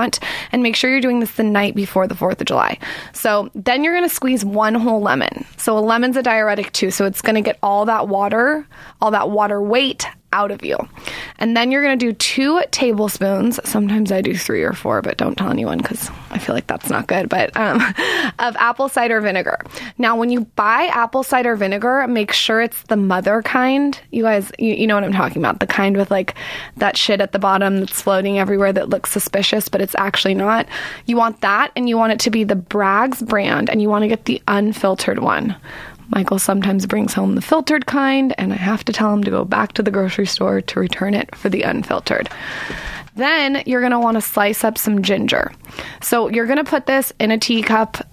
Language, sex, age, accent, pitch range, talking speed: English, female, 20-39, American, 200-245 Hz, 225 wpm